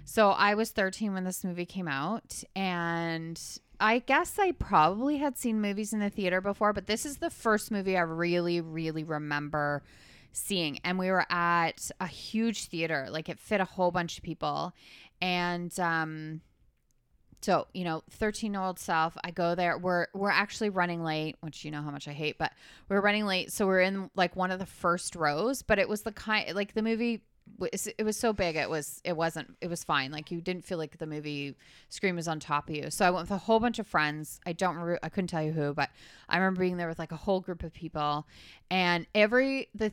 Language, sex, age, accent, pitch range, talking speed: English, female, 20-39, American, 160-205 Hz, 220 wpm